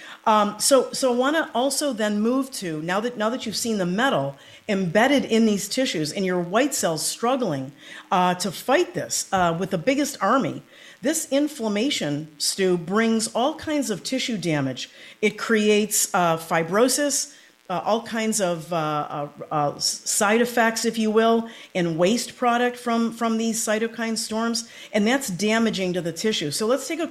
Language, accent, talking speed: English, American, 175 wpm